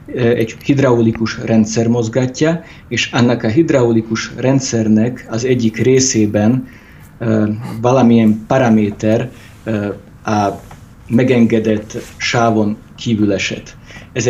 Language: Hungarian